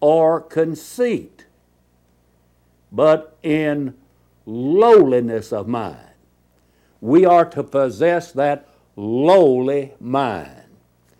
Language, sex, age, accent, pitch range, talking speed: English, male, 60-79, American, 120-165 Hz, 75 wpm